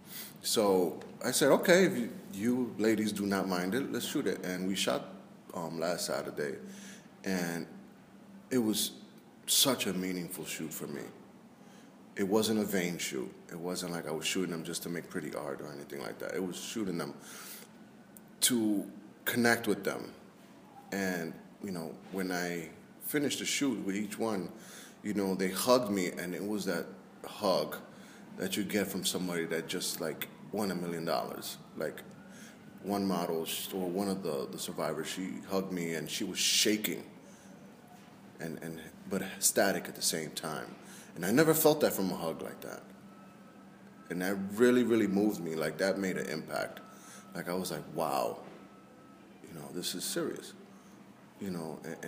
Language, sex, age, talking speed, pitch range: English, male, 30-49, 175 wpm, 85-105 Hz